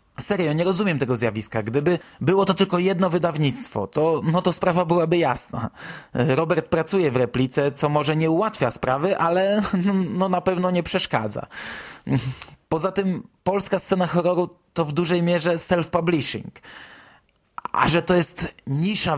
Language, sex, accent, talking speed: Polish, male, native, 140 wpm